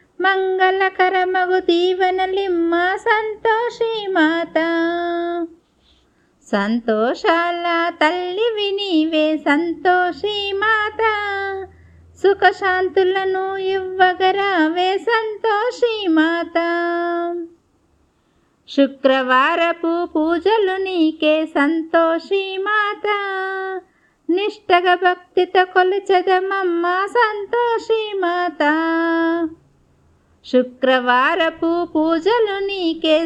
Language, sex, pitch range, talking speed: Telugu, female, 330-390 Hz, 45 wpm